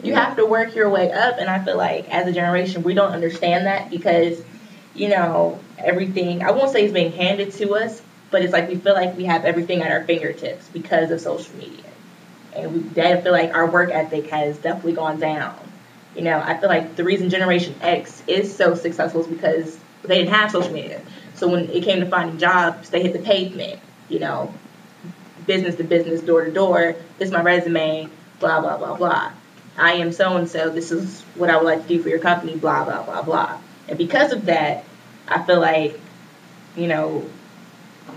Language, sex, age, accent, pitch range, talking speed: English, female, 20-39, American, 165-190 Hz, 205 wpm